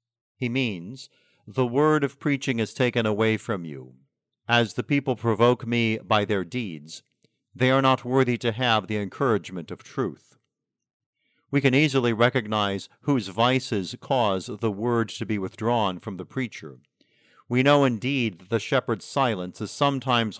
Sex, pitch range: male, 105-130 Hz